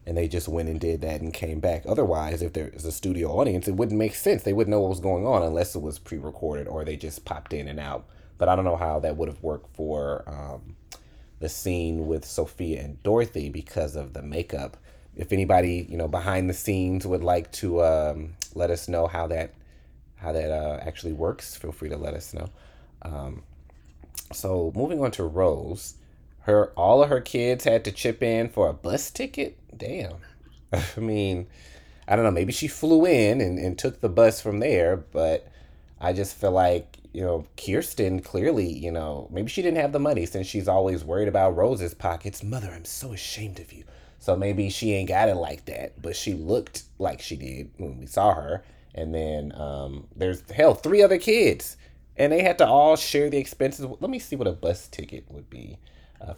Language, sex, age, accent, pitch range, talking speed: English, male, 30-49, American, 75-100 Hz, 210 wpm